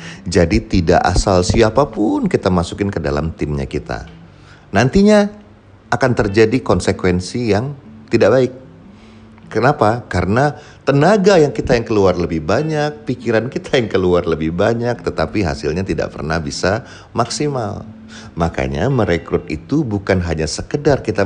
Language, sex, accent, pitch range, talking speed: Indonesian, male, native, 85-115 Hz, 125 wpm